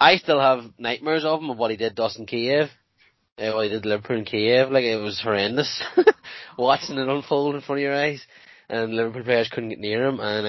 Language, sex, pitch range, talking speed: English, male, 110-135 Hz, 230 wpm